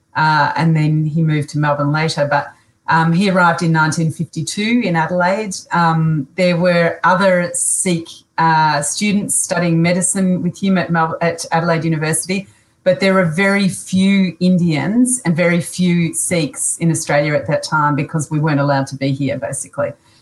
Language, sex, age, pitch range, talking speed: Punjabi, female, 40-59, 155-180 Hz, 165 wpm